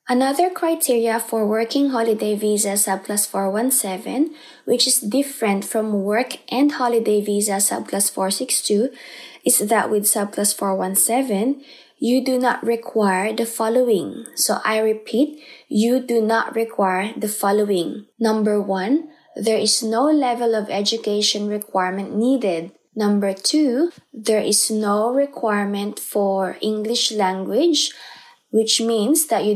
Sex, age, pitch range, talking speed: female, 20-39, 205-245 Hz, 125 wpm